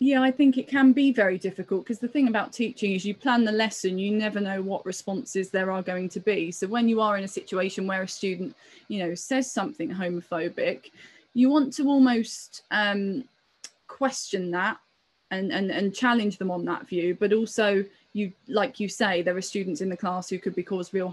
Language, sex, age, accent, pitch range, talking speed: English, female, 20-39, British, 185-220 Hz, 215 wpm